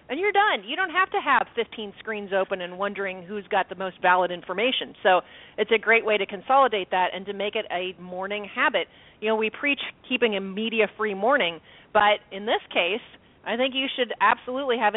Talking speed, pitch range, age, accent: 210 wpm, 195-245 Hz, 40-59, American